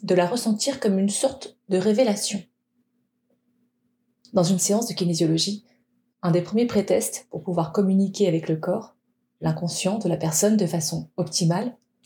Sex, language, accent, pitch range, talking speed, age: female, French, French, 175-240 Hz, 150 wpm, 30-49